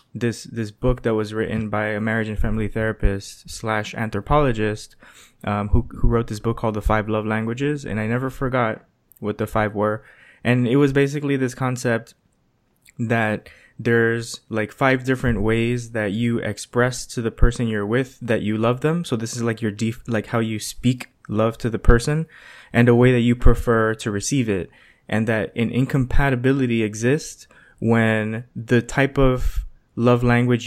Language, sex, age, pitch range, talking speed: English, male, 20-39, 110-125 Hz, 180 wpm